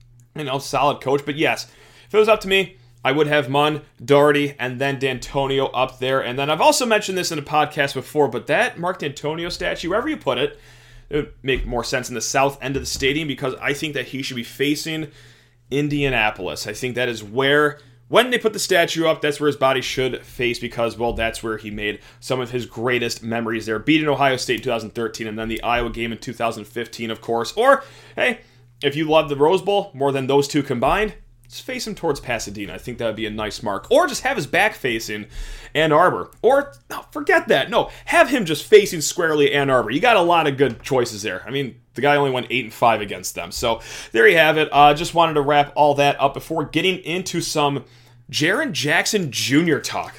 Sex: male